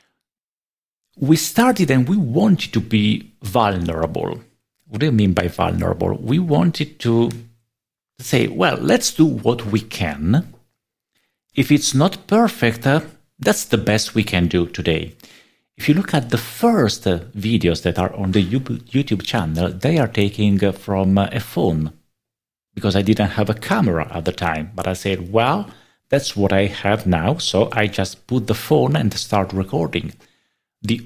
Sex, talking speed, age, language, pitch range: male, 165 wpm, 50-69, English, 95-125 Hz